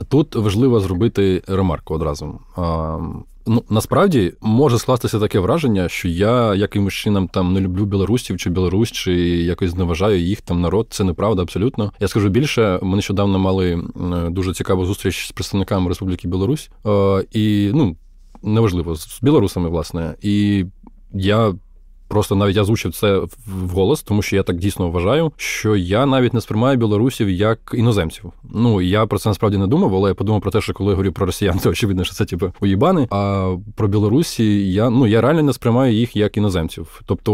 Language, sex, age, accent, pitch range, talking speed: Russian, male, 20-39, native, 95-115 Hz, 175 wpm